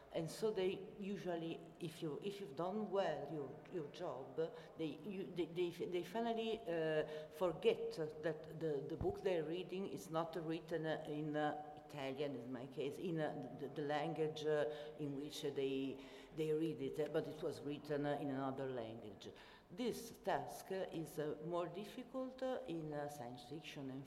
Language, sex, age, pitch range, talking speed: Italian, female, 50-69, 140-170 Hz, 185 wpm